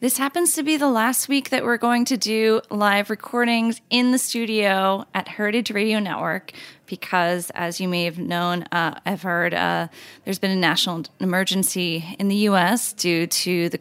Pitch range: 175-215 Hz